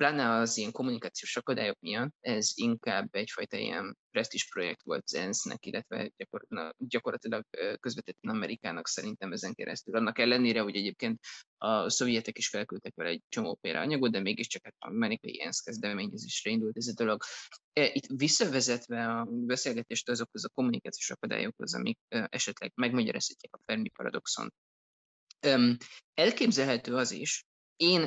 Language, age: Hungarian, 20-39